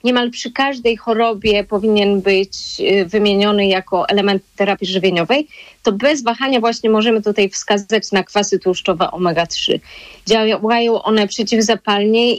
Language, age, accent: Polish, 30-49, native